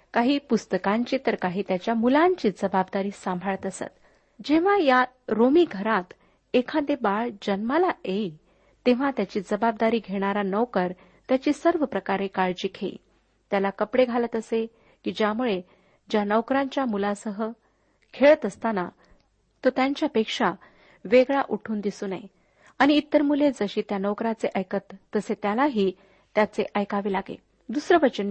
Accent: native